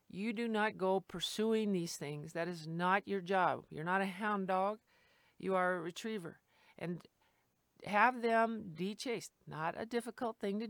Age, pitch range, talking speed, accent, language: 50-69, 180-225 Hz, 170 wpm, American, English